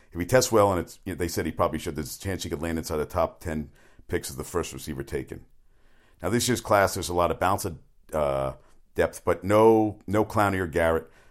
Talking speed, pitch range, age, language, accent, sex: 250 wpm, 95-130 Hz, 50-69, English, American, male